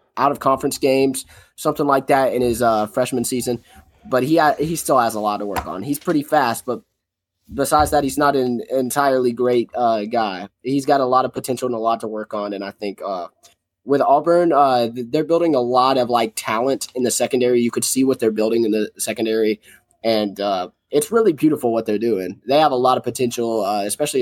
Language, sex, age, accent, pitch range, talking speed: English, male, 20-39, American, 115-150 Hz, 220 wpm